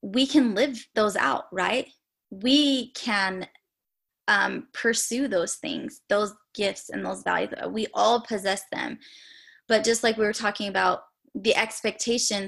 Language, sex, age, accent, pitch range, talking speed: English, female, 20-39, American, 190-230 Hz, 145 wpm